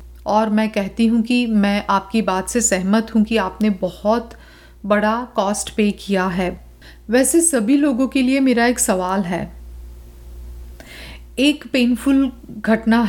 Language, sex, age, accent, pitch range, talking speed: Hindi, female, 40-59, native, 185-250 Hz, 140 wpm